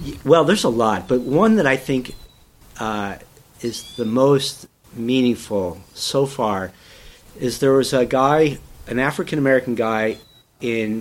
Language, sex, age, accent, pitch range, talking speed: English, male, 50-69, American, 115-140 Hz, 135 wpm